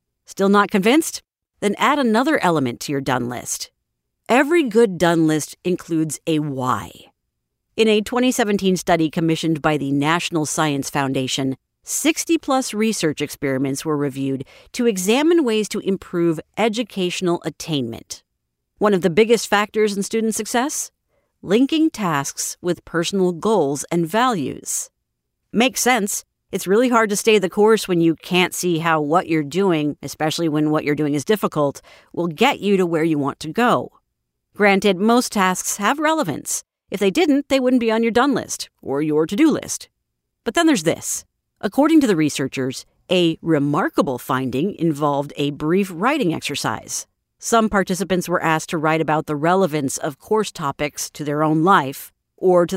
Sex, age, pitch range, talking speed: female, 50-69, 150-220 Hz, 160 wpm